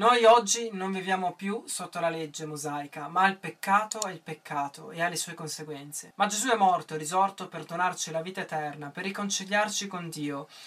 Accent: native